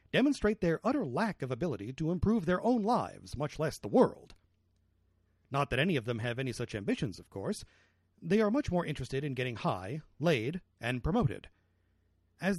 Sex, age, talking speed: male, 40-59, 180 wpm